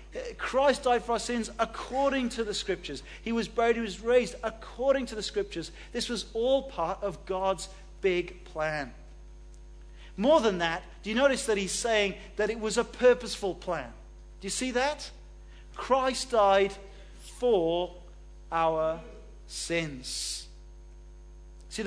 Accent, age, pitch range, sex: British, 40-59, 140-215 Hz, male